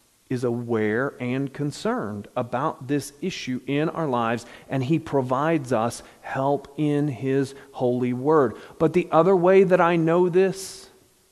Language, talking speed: English, 145 wpm